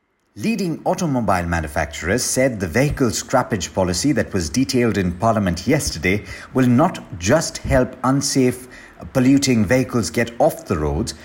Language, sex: English, male